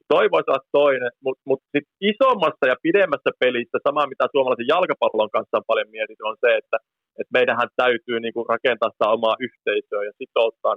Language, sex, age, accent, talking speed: Finnish, male, 30-49, native, 160 wpm